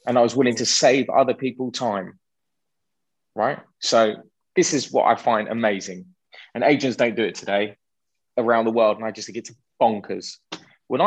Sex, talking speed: male, 180 wpm